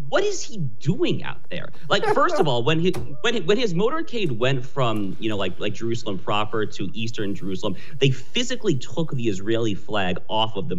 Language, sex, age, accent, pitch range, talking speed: English, male, 40-59, American, 100-130 Hz, 200 wpm